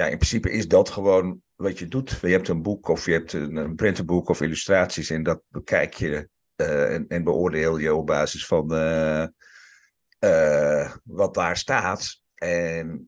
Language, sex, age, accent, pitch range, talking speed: Dutch, male, 50-69, Dutch, 85-105 Hz, 180 wpm